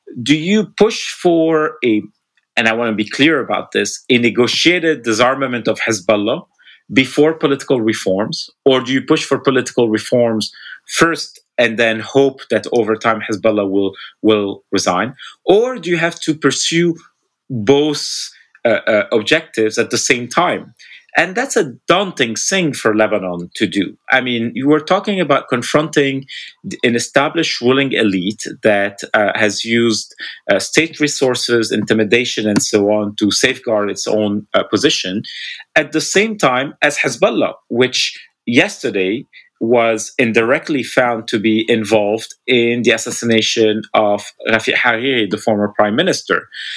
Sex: male